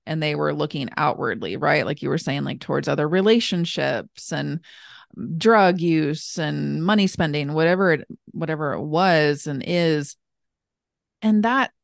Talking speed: 145 wpm